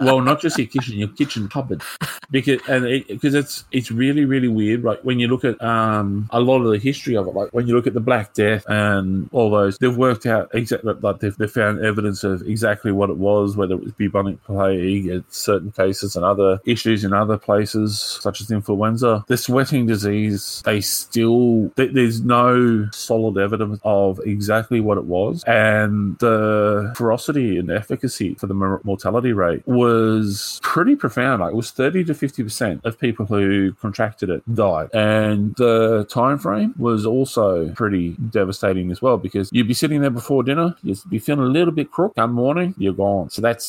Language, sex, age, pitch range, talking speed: English, male, 20-39, 100-120 Hz, 195 wpm